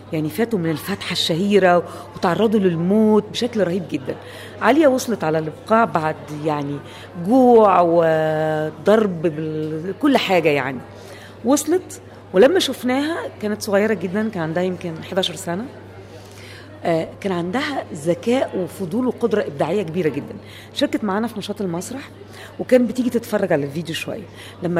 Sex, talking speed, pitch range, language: female, 125 wpm, 160-245 Hz, Arabic